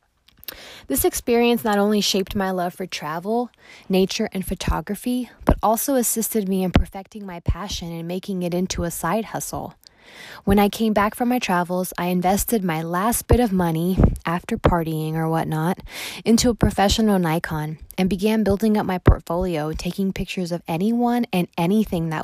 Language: English